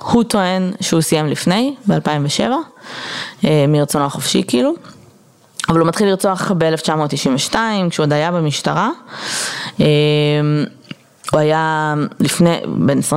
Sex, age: female, 20-39